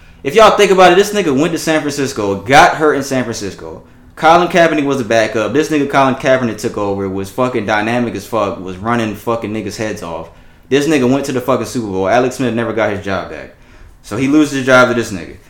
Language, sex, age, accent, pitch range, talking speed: English, male, 20-39, American, 100-145 Hz, 235 wpm